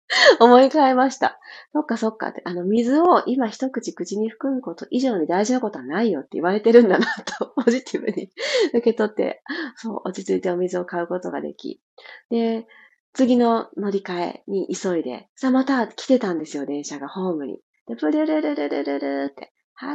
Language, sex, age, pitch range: Japanese, female, 30-49, 185-280 Hz